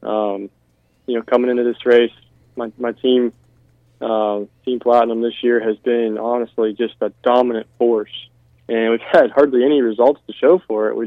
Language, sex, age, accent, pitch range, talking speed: English, male, 20-39, American, 110-125 Hz, 180 wpm